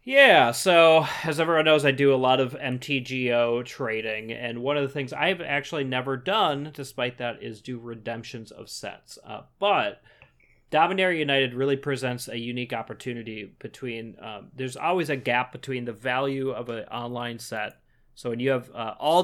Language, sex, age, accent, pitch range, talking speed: English, male, 30-49, American, 115-140 Hz, 175 wpm